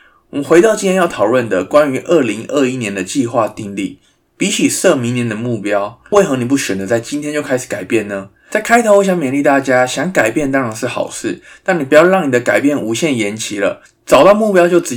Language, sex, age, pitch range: Chinese, male, 20-39, 110-155 Hz